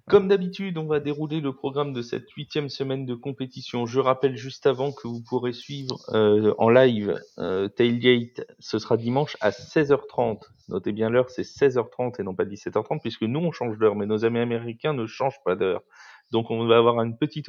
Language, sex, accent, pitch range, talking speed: French, male, French, 110-140 Hz, 200 wpm